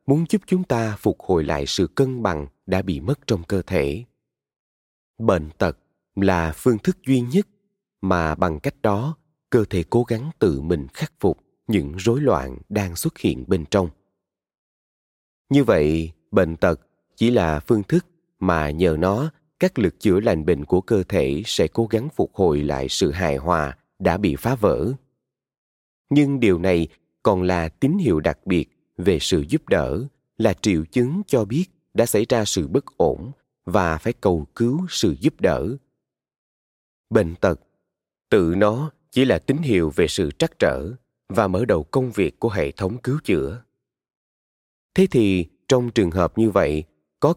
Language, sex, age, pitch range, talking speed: Vietnamese, male, 20-39, 85-130 Hz, 170 wpm